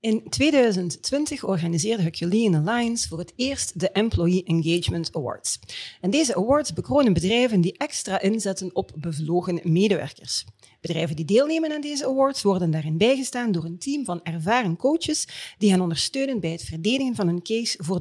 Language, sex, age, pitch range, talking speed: Dutch, female, 40-59, 170-255 Hz, 155 wpm